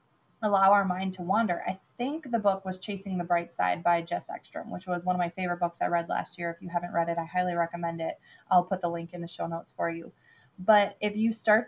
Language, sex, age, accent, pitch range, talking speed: English, female, 20-39, American, 180-205 Hz, 260 wpm